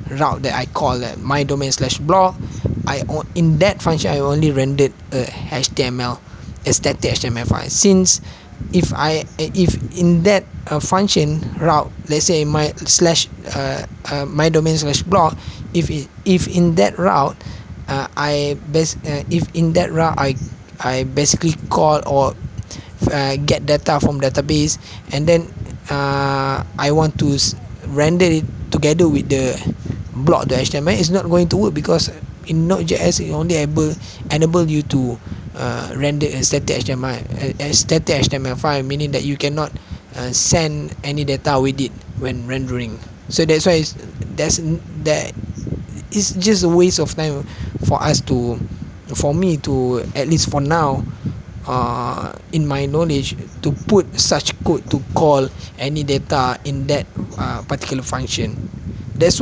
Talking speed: 155 wpm